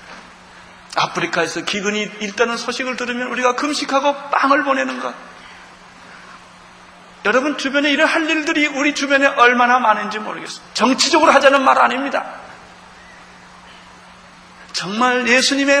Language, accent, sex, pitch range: Korean, native, male, 210-280 Hz